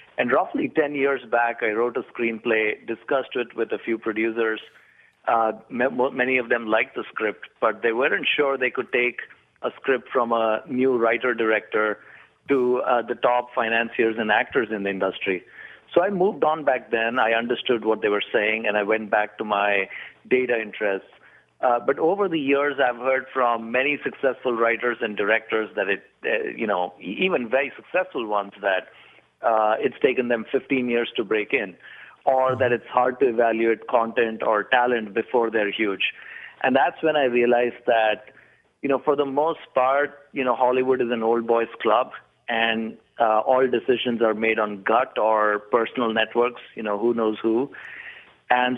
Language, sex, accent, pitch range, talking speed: English, male, Indian, 110-125 Hz, 180 wpm